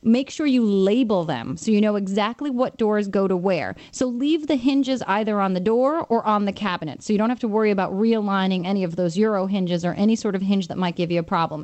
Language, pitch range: English, 195-250 Hz